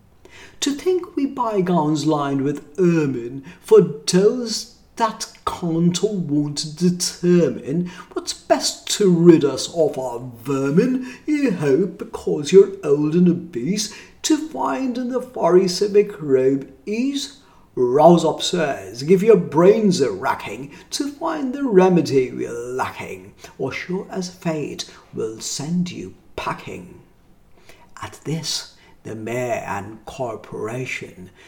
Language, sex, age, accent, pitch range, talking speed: English, male, 50-69, British, 135-215 Hz, 120 wpm